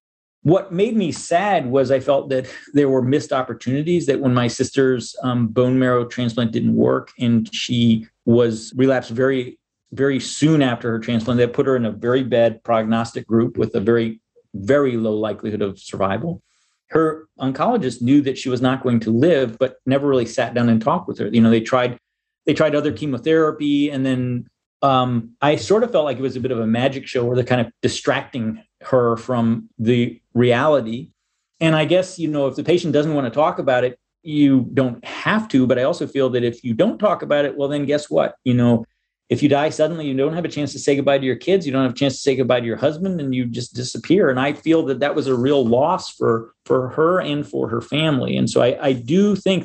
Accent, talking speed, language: American, 225 wpm, English